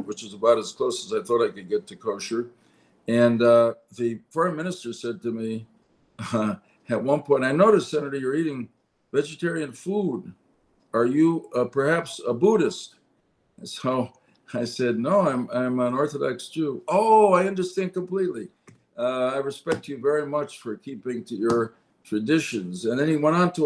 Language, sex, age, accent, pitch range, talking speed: English, male, 60-79, American, 115-165 Hz, 175 wpm